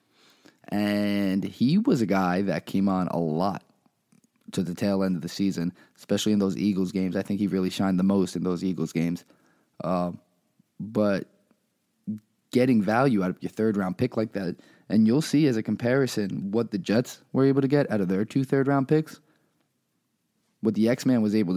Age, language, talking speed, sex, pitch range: 20-39, English, 190 wpm, male, 95-115 Hz